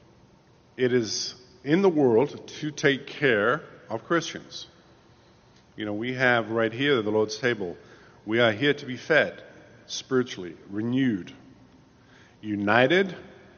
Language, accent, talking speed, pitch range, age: English, American, 130 wpm, 110-140 Hz, 50-69